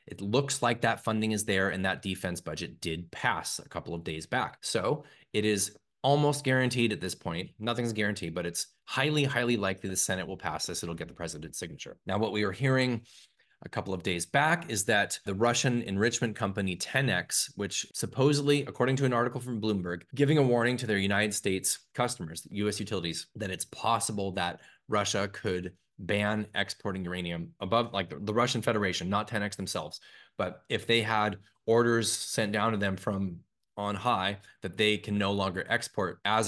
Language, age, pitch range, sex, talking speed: English, 20-39, 95-120 Hz, male, 190 wpm